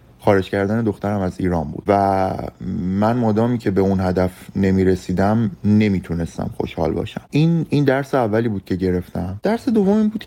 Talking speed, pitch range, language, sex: 165 wpm, 95-125 Hz, Persian, male